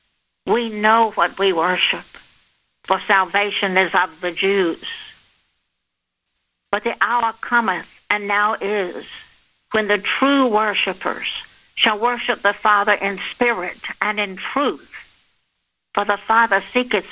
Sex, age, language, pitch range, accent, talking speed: female, 60-79, English, 190-240 Hz, American, 125 wpm